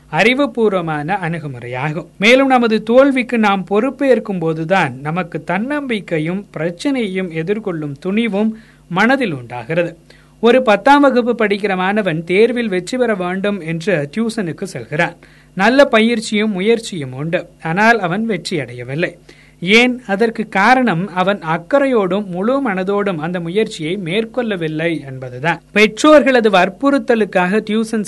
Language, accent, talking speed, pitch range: Tamil, native, 105 wpm, 170-230 Hz